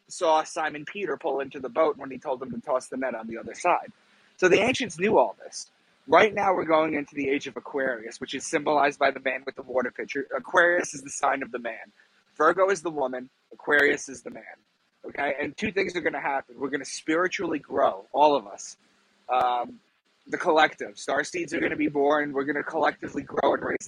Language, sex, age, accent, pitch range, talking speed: English, male, 30-49, American, 140-180 Hz, 230 wpm